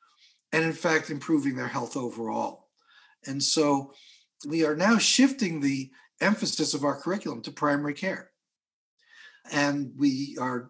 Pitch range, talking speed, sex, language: 140-175 Hz, 135 wpm, male, English